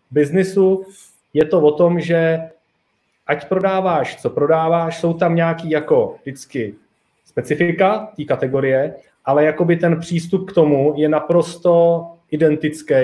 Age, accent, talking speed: 30-49, native, 125 wpm